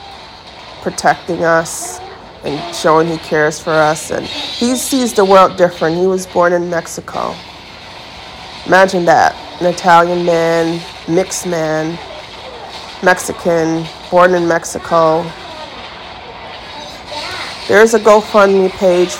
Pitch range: 165-185 Hz